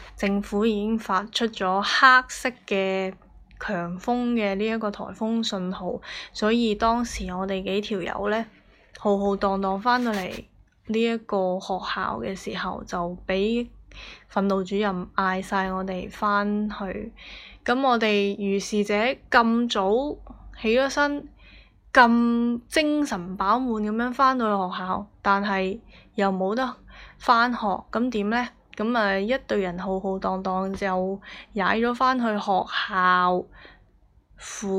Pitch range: 190-230 Hz